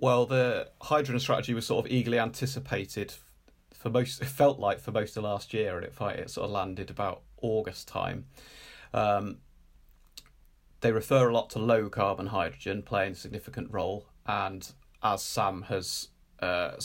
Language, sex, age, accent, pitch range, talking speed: English, male, 30-49, British, 95-120 Hz, 165 wpm